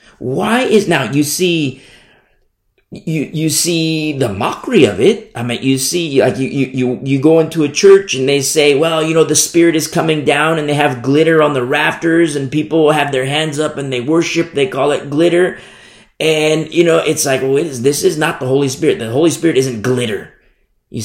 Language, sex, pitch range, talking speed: English, male, 130-170 Hz, 210 wpm